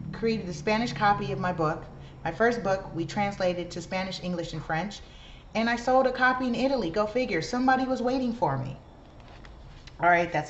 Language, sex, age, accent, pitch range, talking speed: English, female, 30-49, American, 150-230 Hz, 195 wpm